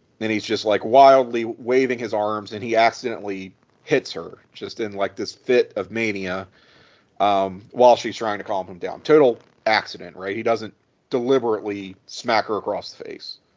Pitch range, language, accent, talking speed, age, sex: 105-130 Hz, English, American, 175 wpm, 40-59, male